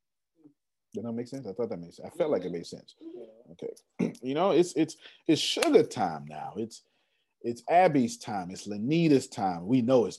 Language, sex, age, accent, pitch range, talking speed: English, male, 40-59, American, 100-140 Hz, 200 wpm